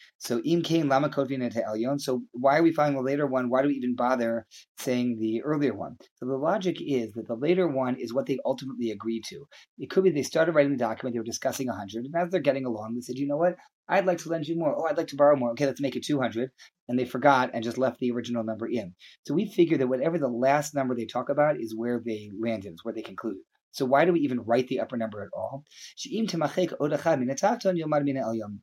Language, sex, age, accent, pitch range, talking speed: English, male, 30-49, American, 115-145 Hz, 240 wpm